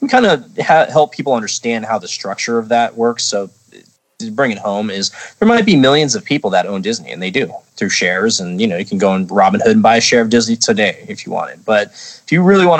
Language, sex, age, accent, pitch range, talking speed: English, male, 20-39, American, 100-150 Hz, 265 wpm